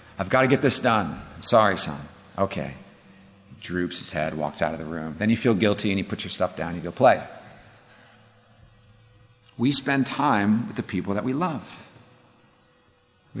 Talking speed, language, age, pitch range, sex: 195 wpm, English, 40-59, 105-130 Hz, male